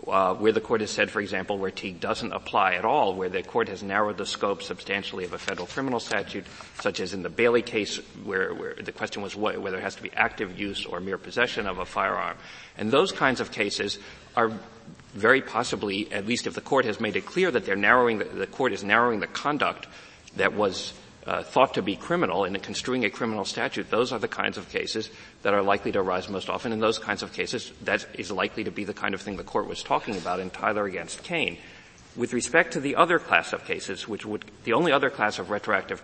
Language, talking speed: English, 240 wpm